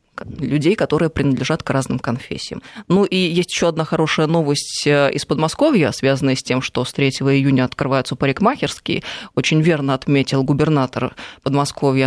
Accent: native